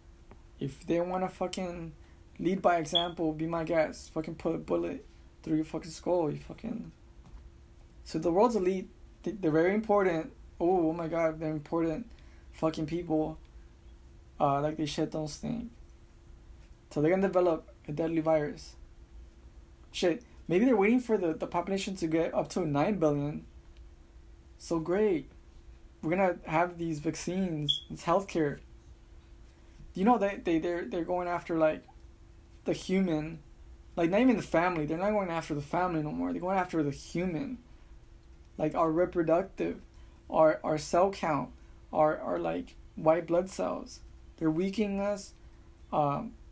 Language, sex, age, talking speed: English, male, 20-39, 155 wpm